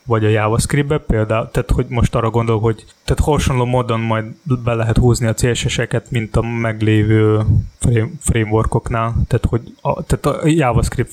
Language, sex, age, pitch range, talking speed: Hungarian, male, 20-39, 115-135 Hz, 155 wpm